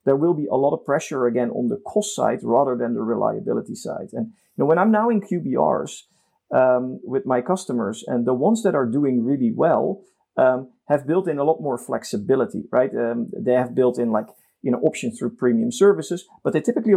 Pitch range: 125-185 Hz